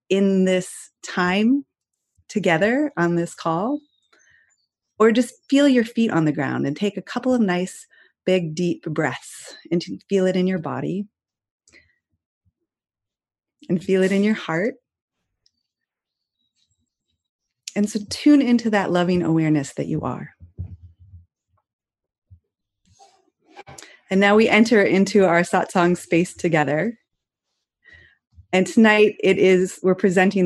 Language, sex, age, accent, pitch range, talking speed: English, female, 30-49, American, 165-210 Hz, 120 wpm